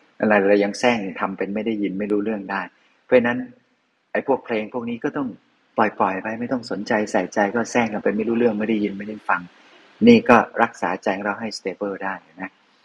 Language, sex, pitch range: Thai, male, 100-110 Hz